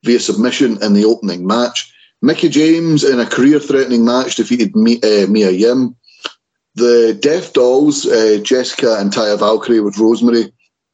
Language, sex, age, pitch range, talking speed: English, male, 30-49, 110-140 Hz, 145 wpm